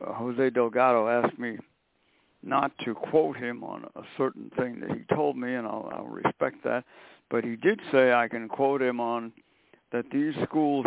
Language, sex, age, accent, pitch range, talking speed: English, male, 60-79, American, 120-150 Hz, 190 wpm